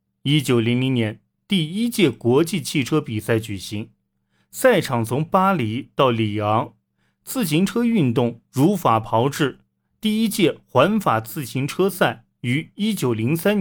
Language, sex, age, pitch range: Chinese, male, 30-49, 110-170 Hz